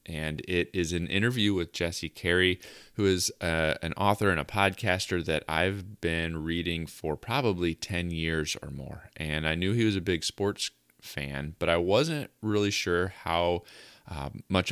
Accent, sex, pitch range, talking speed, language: American, male, 80-100 Hz, 170 wpm, English